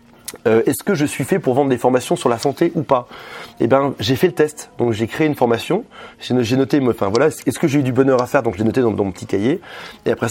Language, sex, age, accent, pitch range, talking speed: French, male, 30-49, French, 120-150 Hz, 285 wpm